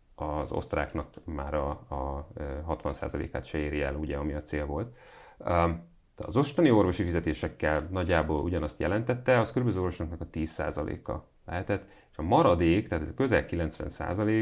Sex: male